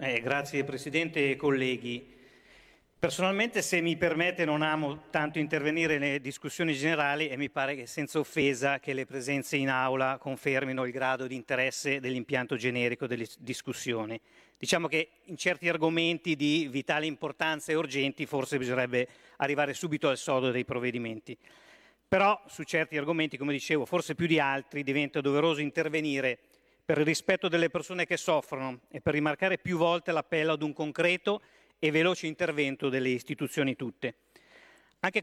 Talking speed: 155 wpm